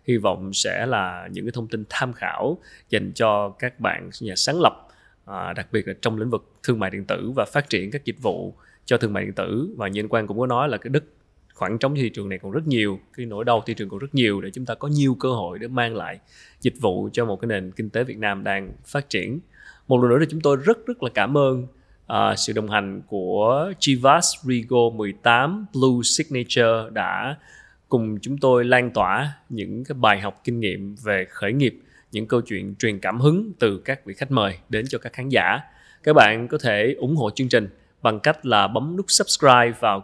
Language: Vietnamese